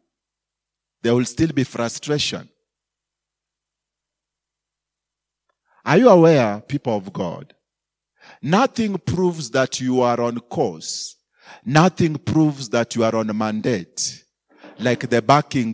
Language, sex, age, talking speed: English, male, 40-59, 110 wpm